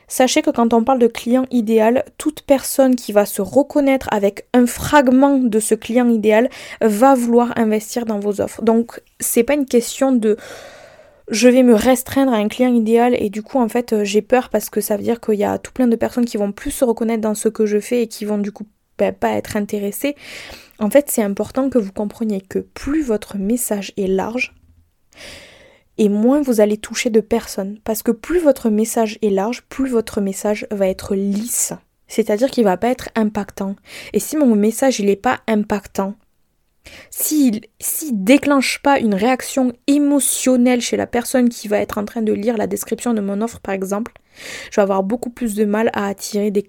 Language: French